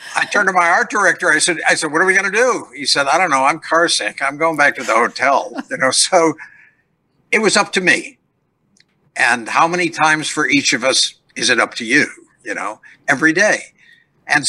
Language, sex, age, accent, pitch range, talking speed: English, male, 60-79, American, 160-185 Hz, 230 wpm